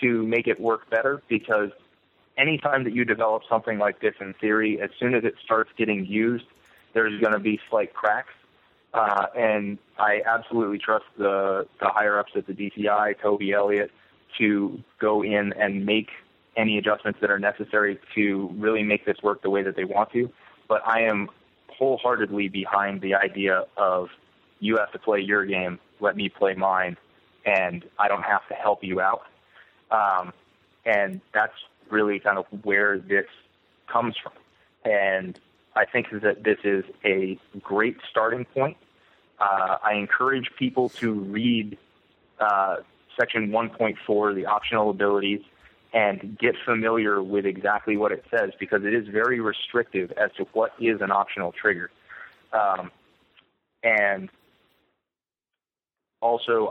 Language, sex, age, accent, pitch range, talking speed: English, male, 20-39, American, 100-115 Hz, 150 wpm